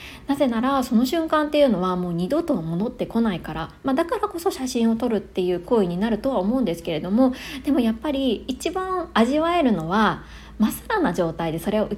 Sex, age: female, 20-39